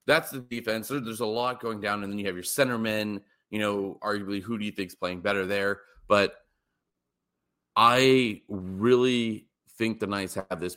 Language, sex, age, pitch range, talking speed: English, male, 30-49, 95-115 Hz, 185 wpm